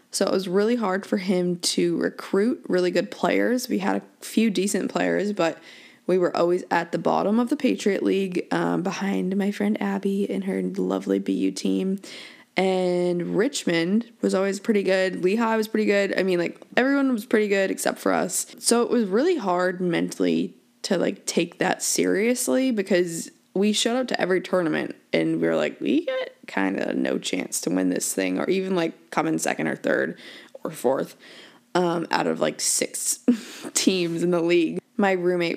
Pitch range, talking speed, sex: 170-220 Hz, 190 wpm, female